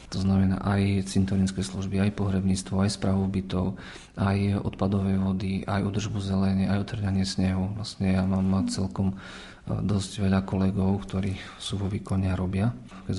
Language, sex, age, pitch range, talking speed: Slovak, male, 40-59, 95-105 Hz, 150 wpm